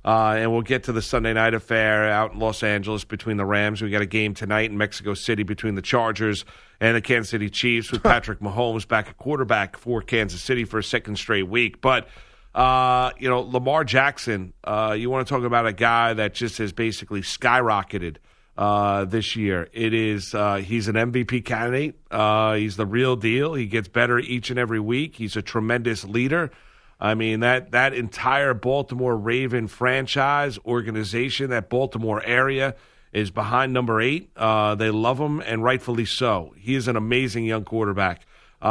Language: English